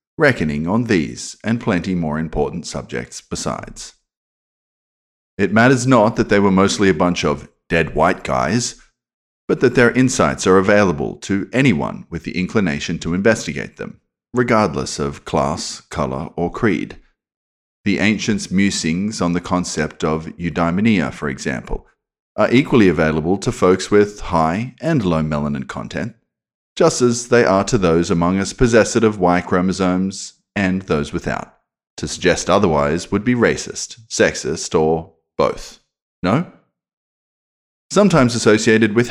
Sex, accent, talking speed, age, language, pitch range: male, Australian, 140 wpm, 40-59, English, 80-110 Hz